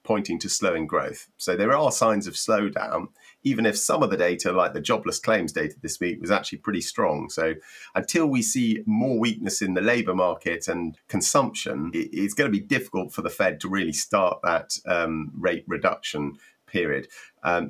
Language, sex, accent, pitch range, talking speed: English, male, British, 90-120 Hz, 190 wpm